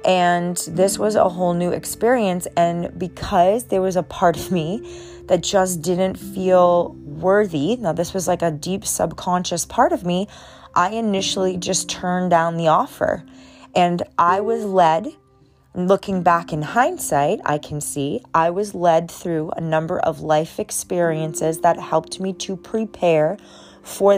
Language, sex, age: English, female, 30-49